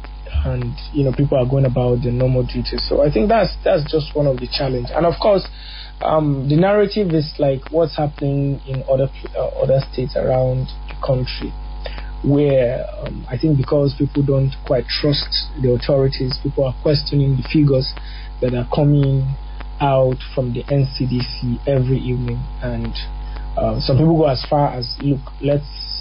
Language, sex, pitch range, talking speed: English, male, 130-155 Hz, 170 wpm